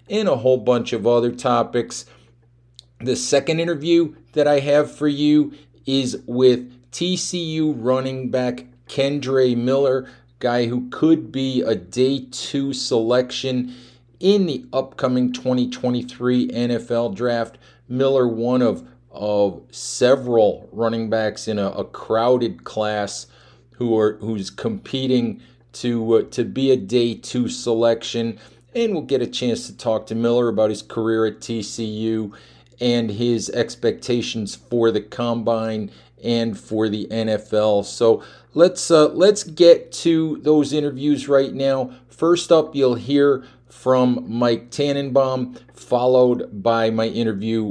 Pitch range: 115-135 Hz